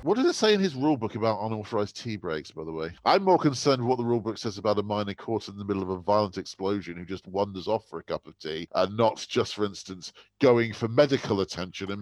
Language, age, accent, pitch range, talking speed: English, 40-59, British, 85-120 Hz, 270 wpm